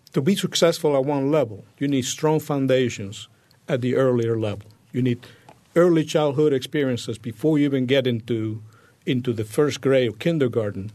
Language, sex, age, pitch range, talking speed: English, male, 50-69, 120-150 Hz, 165 wpm